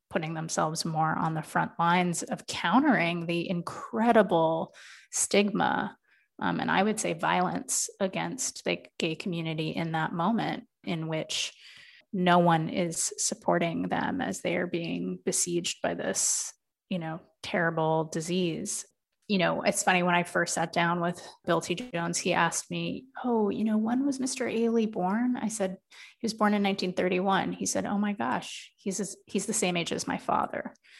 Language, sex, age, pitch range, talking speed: English, female, 30-49, 165-210 Hz, 170 wpm